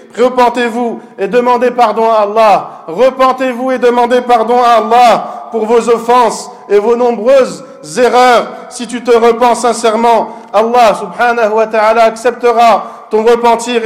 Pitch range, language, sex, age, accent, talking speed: 225-250 Hz, French, male, 50-69, French, 135 wpm